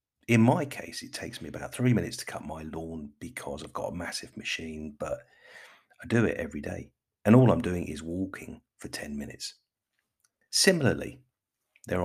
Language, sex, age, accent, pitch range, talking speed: English, male, 40-59, British, 85-110 Hz, 180 wpm